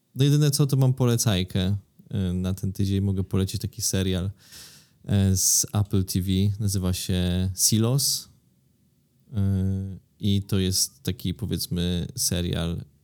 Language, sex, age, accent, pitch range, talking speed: Polish, male, 20-39, native, 100-120 Hz, 115 wpm